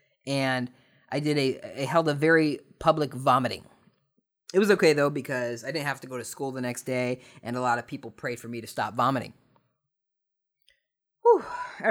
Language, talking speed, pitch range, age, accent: English, 185 wpm, 120-150 Hz, 20-39, American